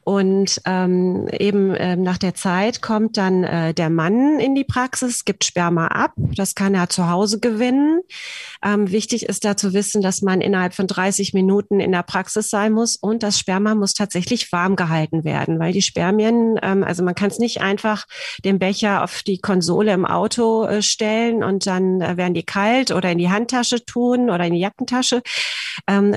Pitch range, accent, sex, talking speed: 185-225 Hz, German, female, 195 wpm